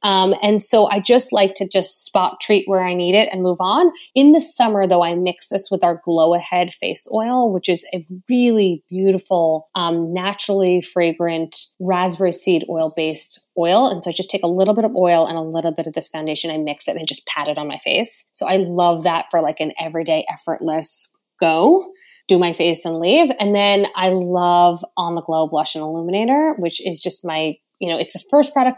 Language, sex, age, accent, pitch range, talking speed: English, female, 20-39, American, 170-215 Hz, 220 wpm